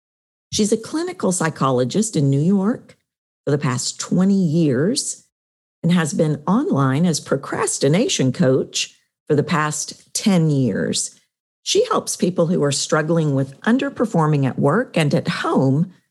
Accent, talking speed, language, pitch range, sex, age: American, 140 wpm, English, 140-205 Hz, female, 50-69